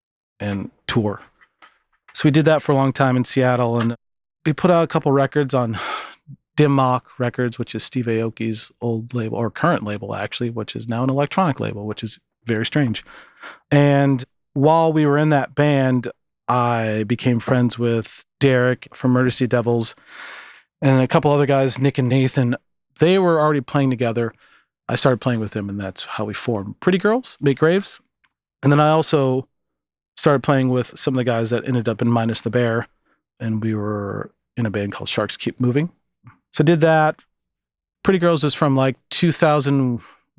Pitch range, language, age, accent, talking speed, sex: 115-140 Hz, English, 30-49, American, 185 wpm, male